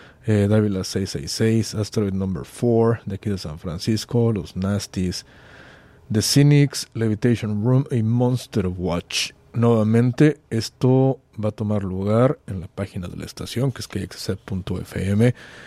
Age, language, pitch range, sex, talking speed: 40-59, English, 100-125 Hz, male, 130 wpm